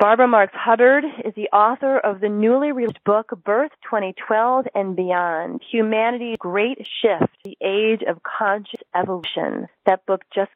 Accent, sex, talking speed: American, female, 150 wpm